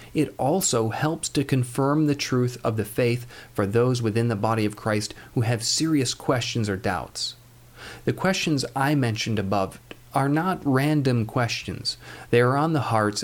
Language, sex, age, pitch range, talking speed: English, male, 40-59, 110-130 Hz, 170 wpm